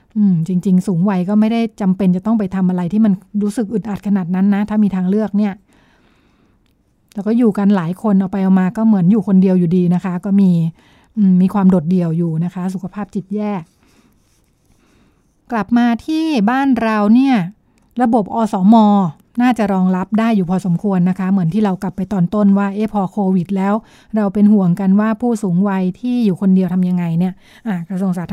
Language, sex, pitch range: Thai, female, 185-210 Hz